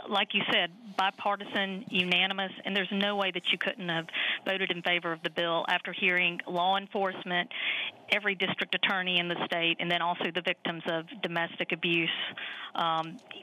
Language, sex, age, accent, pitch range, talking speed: English, female, 40-59, American, 170-195 Hz, 170 wpm